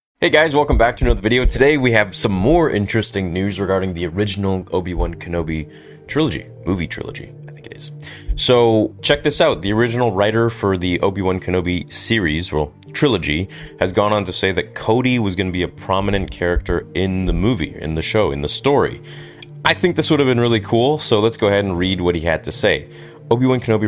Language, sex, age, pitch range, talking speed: English, male, 30-49, 85-115 Hz, 210 wpm